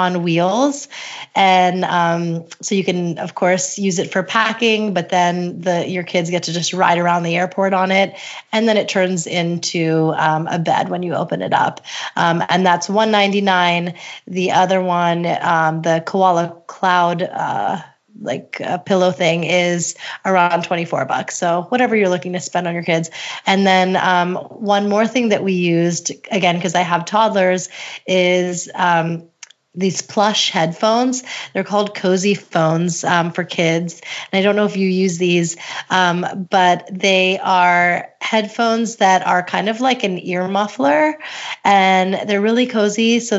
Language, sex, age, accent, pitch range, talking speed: English, female, 30-49, American, 175-200 Hz, 170 wpm